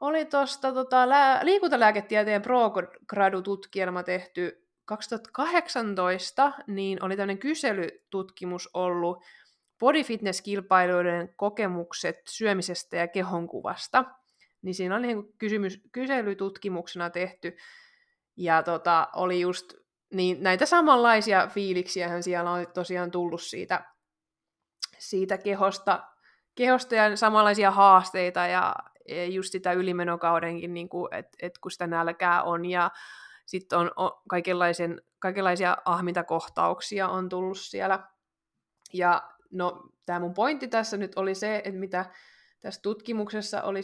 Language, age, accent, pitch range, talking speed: Finnish, 20-39, native, 180-210 Hz, 105 wpm